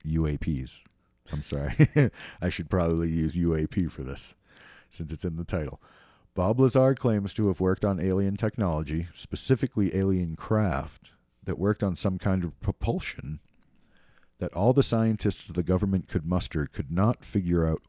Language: English